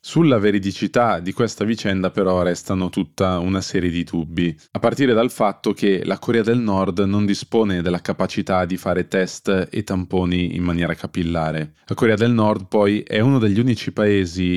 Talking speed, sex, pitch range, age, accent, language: 175 wpm, male, 90-110 Hz, 20-39, native, Italian